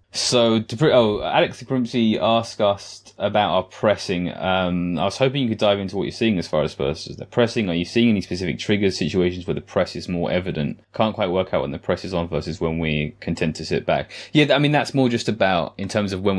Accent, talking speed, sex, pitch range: British, 255 wpm, male, 85-105 Hz